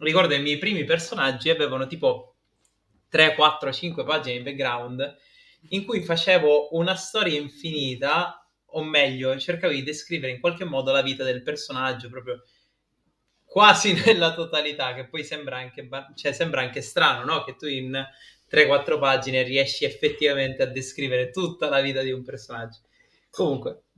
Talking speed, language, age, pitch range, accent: 155 wpm, Italian, 20-39, 130-170 Hz, native